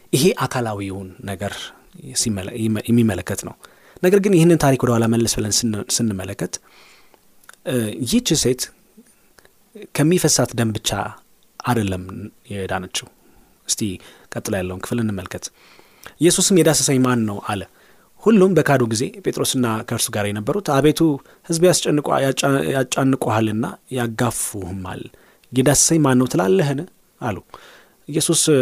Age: 30-49